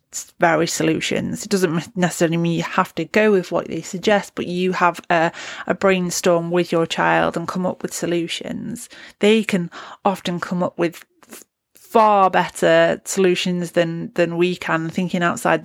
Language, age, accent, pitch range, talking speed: English, 30-49, British, 170-190 Hz, 165 wpm